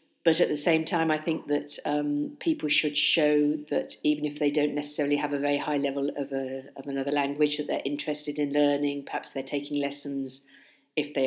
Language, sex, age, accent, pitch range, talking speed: English, female, 50-69, British, 135-150 Hz, 200 wpm